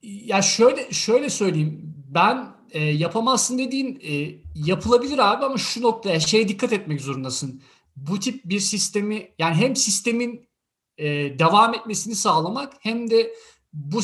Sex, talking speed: male, 135 wpm